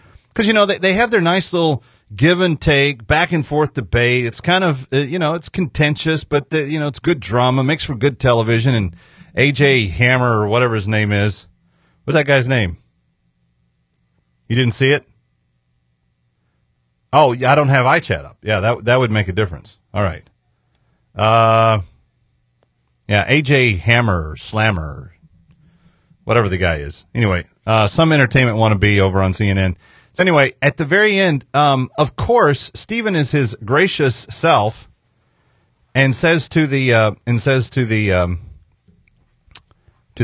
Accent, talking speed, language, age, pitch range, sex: American, 160 wpm, English, 40-59, 100-145 Hz, male